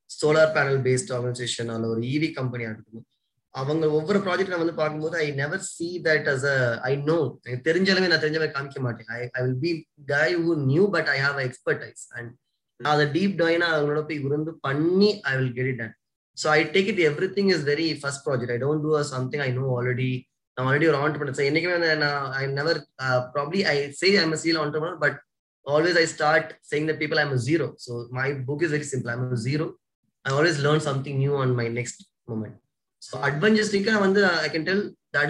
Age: 20-39